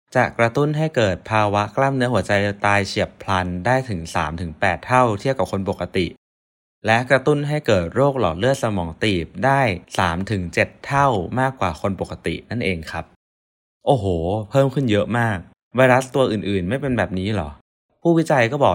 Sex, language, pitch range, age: male, Thai, 90-125 Hz, 20-39